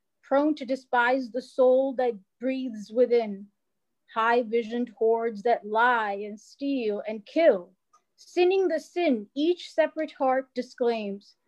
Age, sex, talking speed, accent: 30-49, female, 125 wpm, American